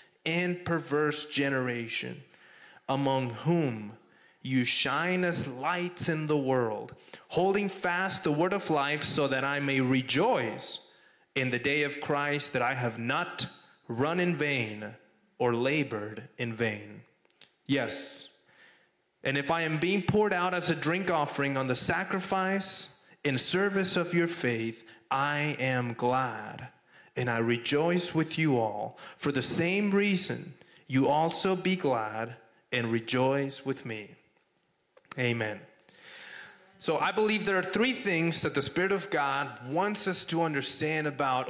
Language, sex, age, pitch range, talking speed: English, male, 20-39, 130-175 Hz, 140 wpm